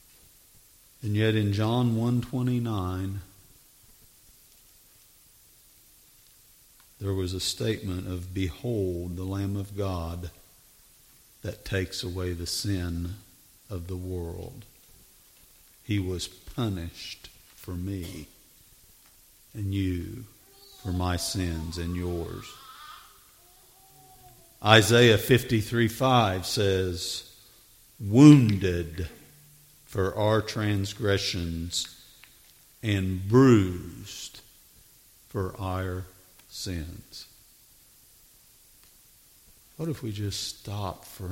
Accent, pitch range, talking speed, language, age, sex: American, 90-110 Hz, 80 wpm, English, 50-69, male